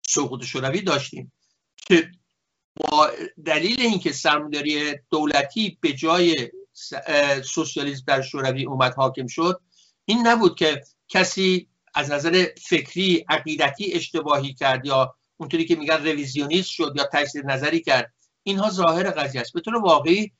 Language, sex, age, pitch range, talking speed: Persian, male, 60-79, 145-185 Hz, 125 wpm